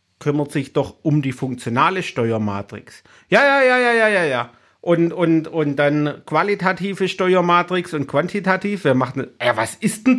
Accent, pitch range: German, 120-165 Hz